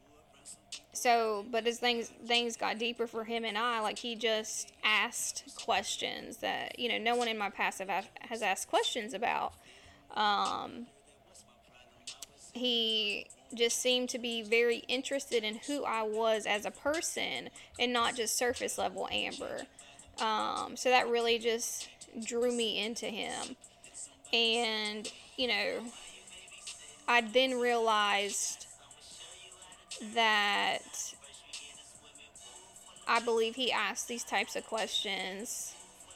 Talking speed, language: 125 wpm, English